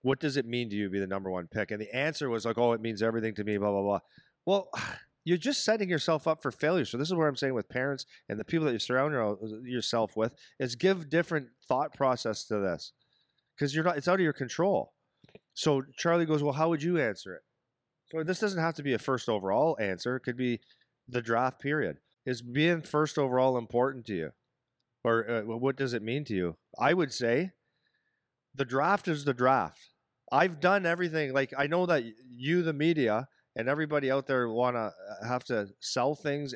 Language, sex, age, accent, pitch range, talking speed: English, male, 40-59, American, 120-155 Hz, 215 wpm